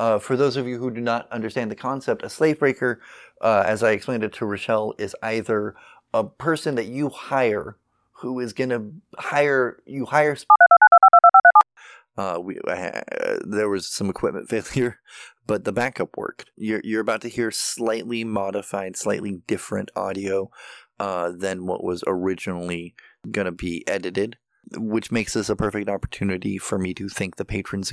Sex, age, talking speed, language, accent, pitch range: male, 20-39, 165 wpm, English, American, 95-120 Hz